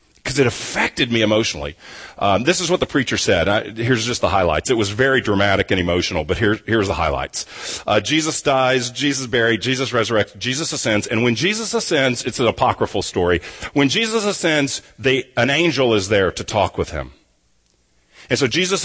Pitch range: 105-140 Hz